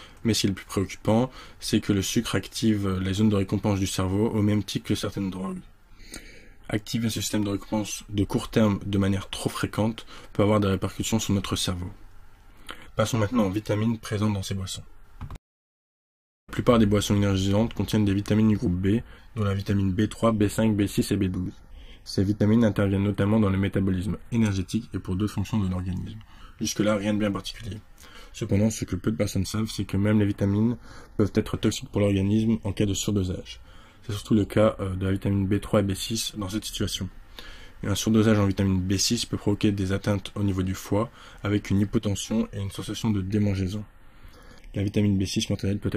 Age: 20-39